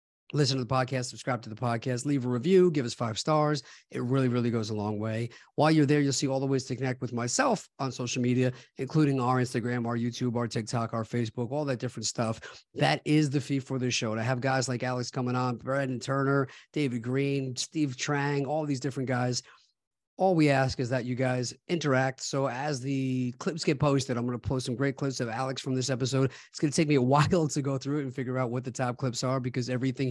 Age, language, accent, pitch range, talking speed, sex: 40-59, English, American, 120-135 Hz, 240 wpm, male